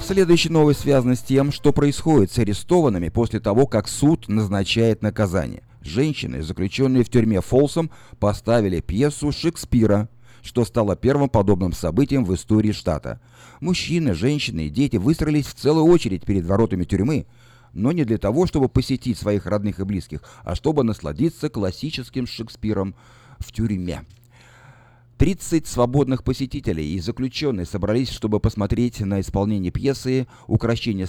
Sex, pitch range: male, 100-135 Hz